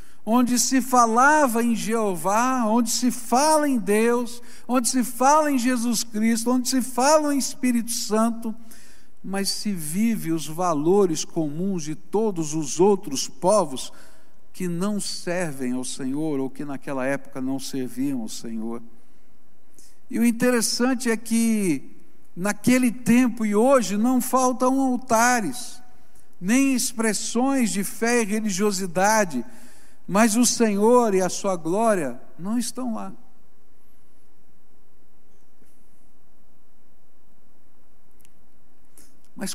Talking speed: 115 wpm